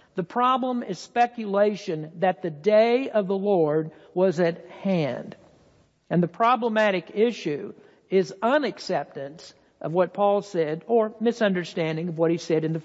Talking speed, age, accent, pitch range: 145 wpm, 60-79, American, 175-225 Hz